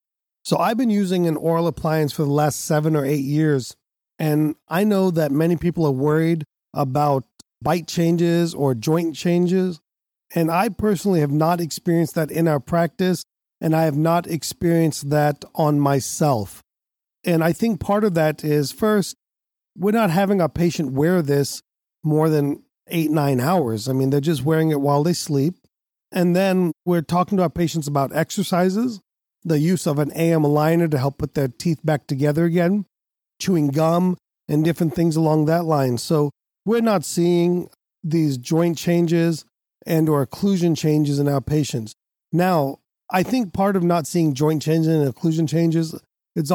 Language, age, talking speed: English, 40-59, 170 wpm